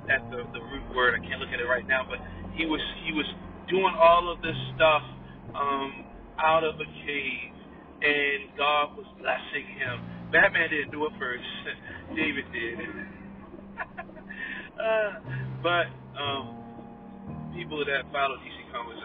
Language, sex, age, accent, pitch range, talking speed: English, male, 40-59, American, 125-150 Hz, 140 wpm